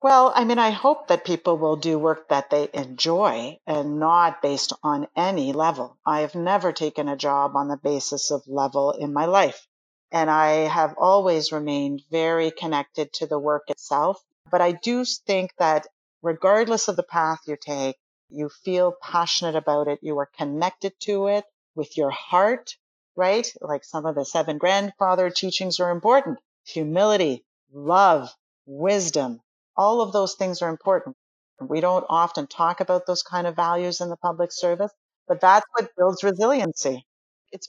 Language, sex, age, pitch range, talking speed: French, female, 40-59, 150-200 Hz, 170 wpm